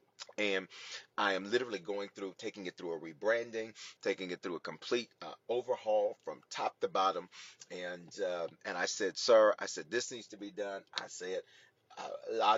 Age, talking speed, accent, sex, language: 30-49, 180 wpm, American, male, English